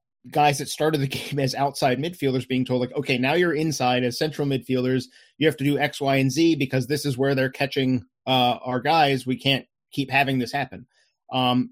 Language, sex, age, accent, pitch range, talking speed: English, male, 30-49, American, 130-145 Hz, 215 wpm